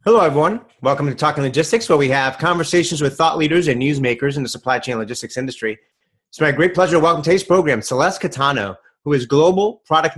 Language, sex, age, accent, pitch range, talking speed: English, male, 30-49, American, 130-165 Hz, 205 wpm